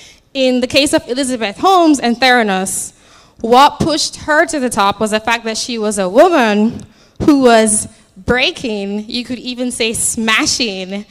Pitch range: 200-255 Hz